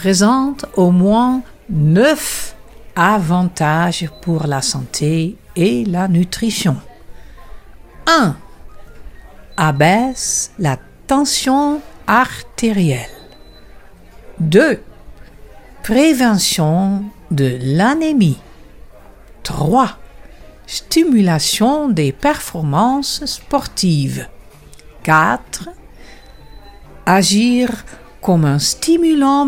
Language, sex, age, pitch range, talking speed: French, female, 60-79, 155-260 Hz, 60 wpm